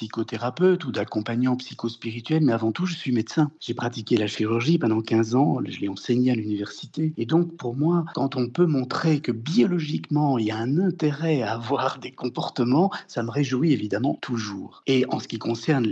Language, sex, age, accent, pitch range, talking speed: French, male, 60-79, French, 115-160 Hz, 190 wpm